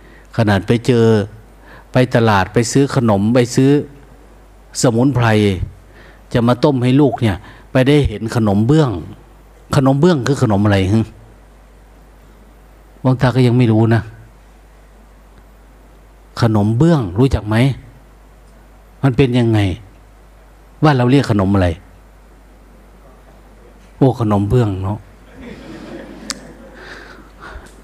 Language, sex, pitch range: Thai, male, 105-140 Hz